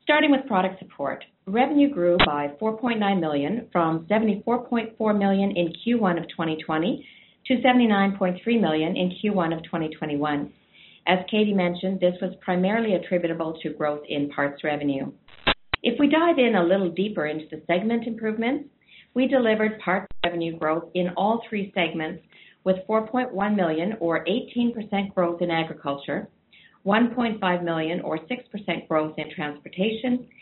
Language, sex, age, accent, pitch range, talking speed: English, female, 50-69, American, 165-220 Hz, 140 wpm